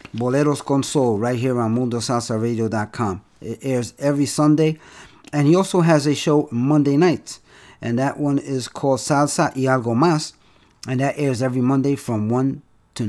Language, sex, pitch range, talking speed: English, male, 115-145 Hz, 165 wpm